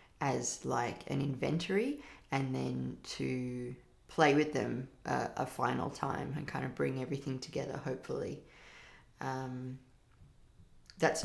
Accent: Australian